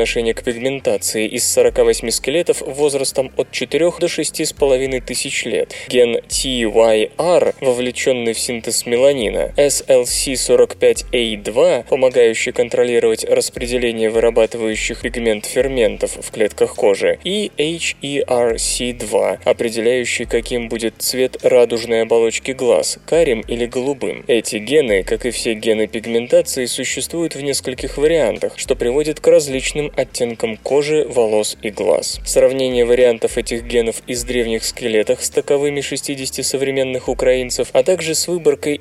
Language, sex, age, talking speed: Russian, male, 20-39, 115 wpm